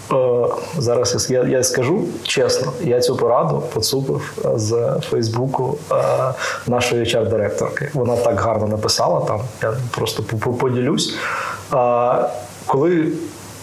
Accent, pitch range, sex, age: native, 115-155 Hz, male, 20-39